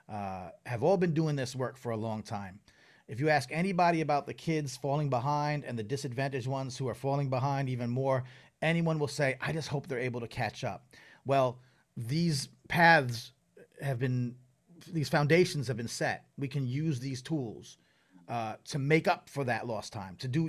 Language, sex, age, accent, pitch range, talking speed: English, male, 30-49, American, 125-160 Hz, 195 wpm